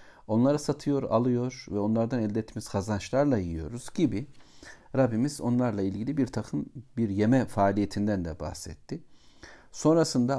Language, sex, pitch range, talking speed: Turkish, male, 95-125 Hz, 120 wpm